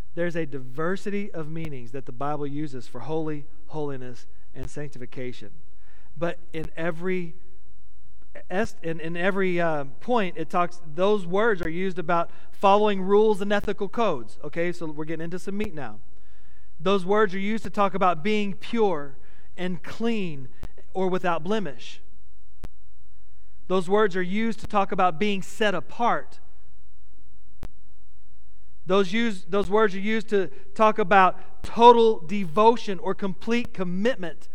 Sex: male